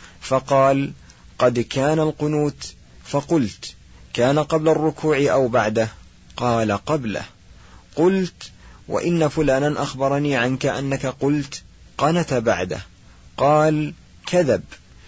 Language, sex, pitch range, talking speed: Arabic, male, 125-145 Hz, 90 wpm